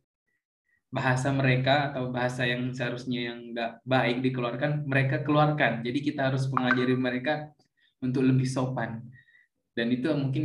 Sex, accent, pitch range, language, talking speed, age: male, native, 120-135 Hz, Indonesian, 130 wpm, 20-39